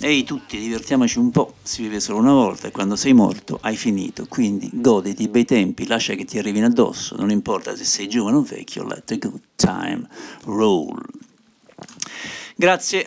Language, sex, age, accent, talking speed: Italian, male, 50-69, native, 180 wpm